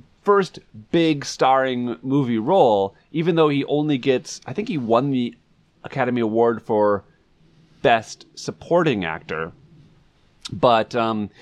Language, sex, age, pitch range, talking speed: English, male, 30-49, 100-140 Hz, 120 wpm